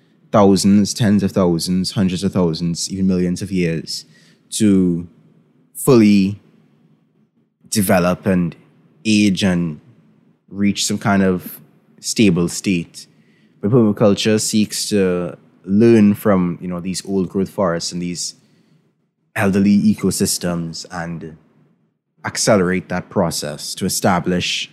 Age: 20-39